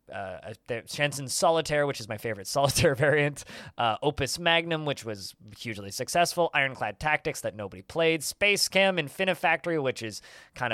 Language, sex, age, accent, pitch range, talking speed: English, male, 20-39, American, 115-150 Hz, 150 wpm